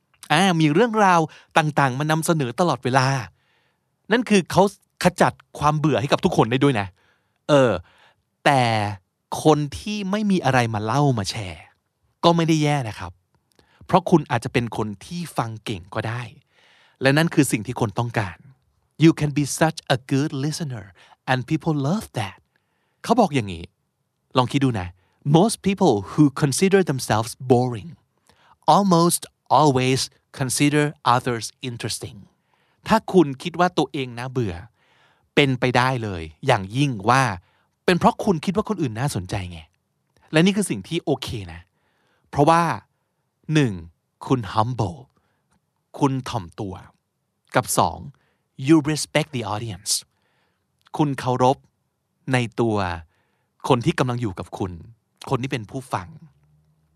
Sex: male